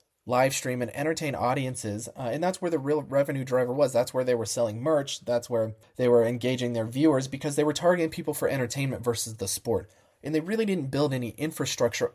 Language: English